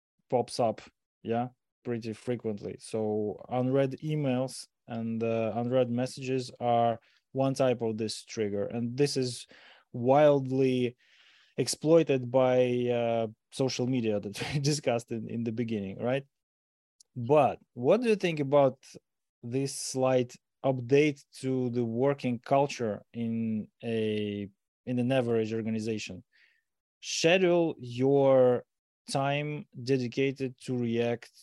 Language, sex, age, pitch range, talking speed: Ukrainian, male, 20-39, 115-135 Hz, 115 wpm